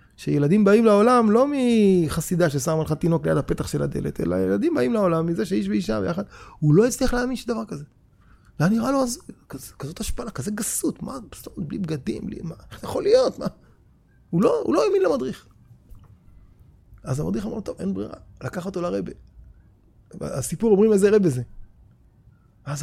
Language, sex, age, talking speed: Hebrew, male, 30-49, 165 wpm